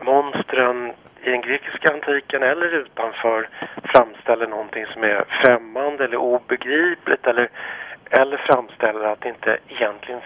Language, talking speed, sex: Finnish, 125 wpm, male